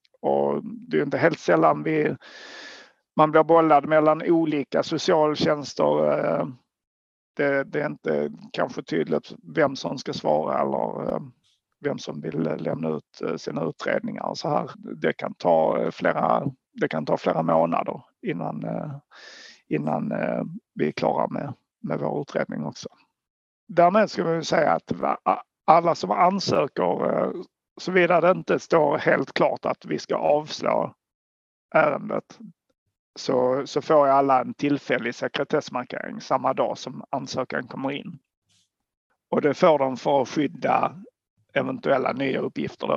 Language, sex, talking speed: Swedish, male, 135 wpm